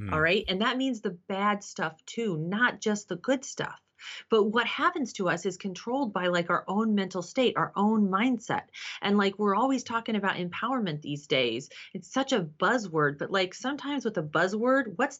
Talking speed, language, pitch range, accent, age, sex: 195 wpm, English, 160-210 Hz, American, 30-49, female